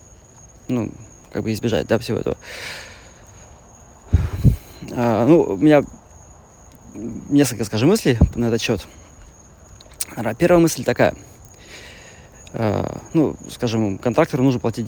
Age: 30-49